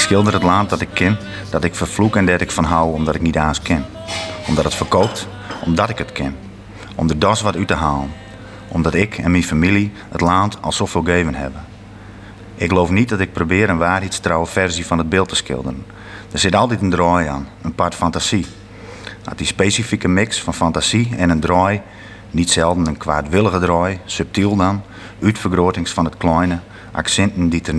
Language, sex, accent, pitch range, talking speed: Dutch, male, Dutch, 85-100 Hz, 205 wpm